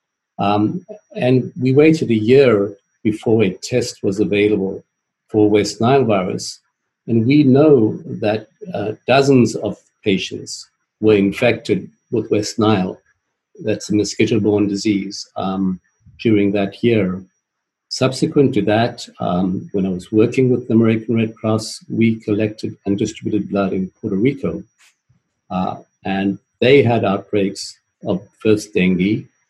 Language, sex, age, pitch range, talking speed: English, male, 50-69, 100-115 Hz, 135 wpm